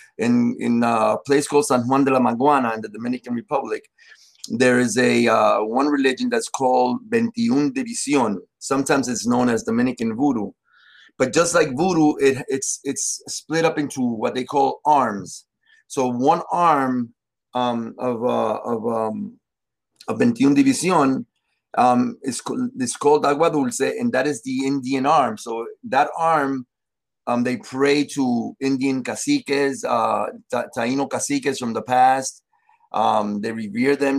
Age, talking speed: 30-49, 155 wpm